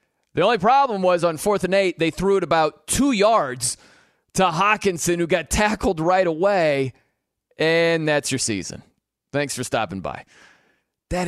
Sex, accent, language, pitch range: male, American, English, 155-210 Hz